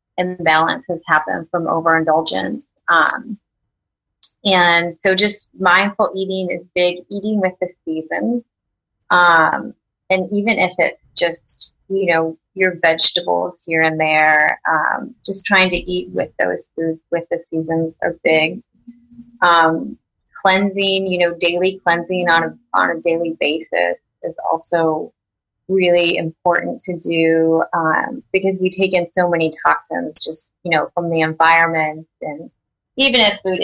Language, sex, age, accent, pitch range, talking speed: English, female, 30-49, American, 160-190 Hz, 140 wpm